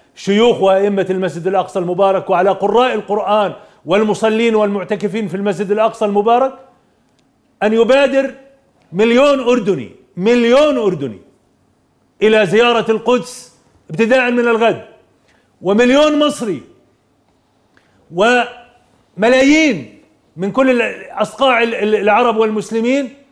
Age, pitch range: 40-59, 210-255 Hz